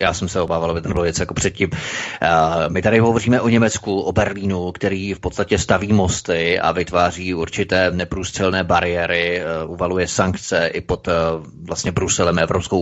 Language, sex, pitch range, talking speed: Czech, male, 95-115 Hz, 160 wpm